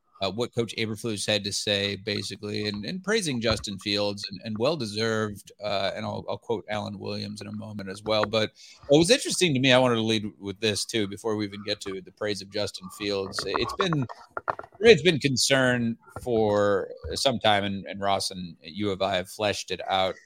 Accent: American